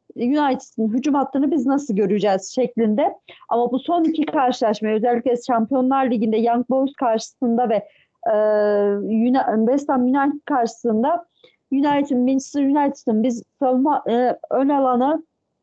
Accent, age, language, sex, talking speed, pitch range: native, 40-59, Turkish, female, 115 wpm, 235-285 Hz